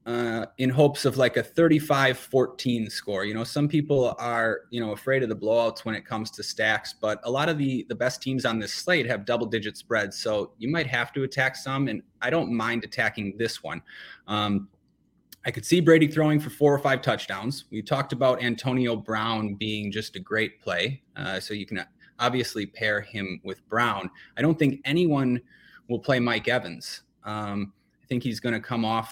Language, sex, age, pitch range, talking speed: English, male, 20-39, 110-135 Hz, 205 wpm